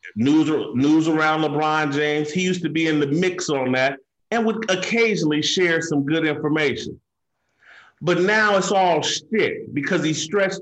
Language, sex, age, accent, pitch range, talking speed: English, male, 40-59, American, 140-185 Hz, 165 wpm